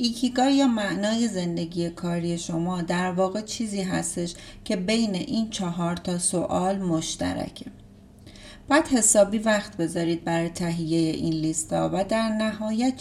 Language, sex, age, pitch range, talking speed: Persian, female, 30-49, 170-215 Hz, 130 wpm